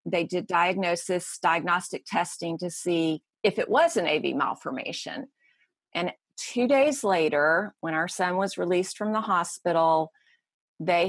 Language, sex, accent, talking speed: English, female, American, 140 wpm